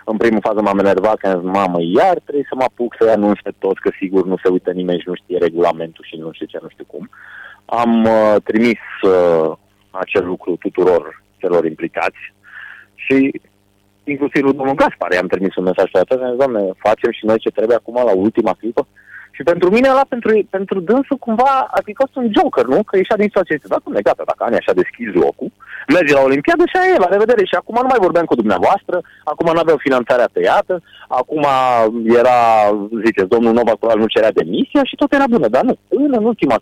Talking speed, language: 205 wpm, Romanian